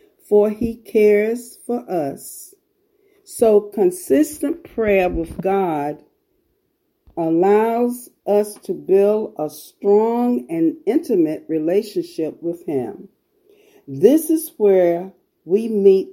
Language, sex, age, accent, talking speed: English, female, 50-69, American, 95 wpm